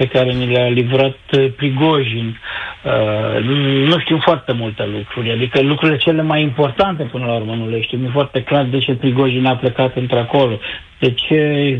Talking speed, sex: 175 wpm, male